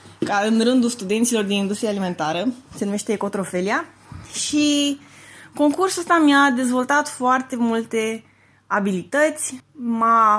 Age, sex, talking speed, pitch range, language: 20-39, female, 110 wpm, 220-285 Hz, Romanian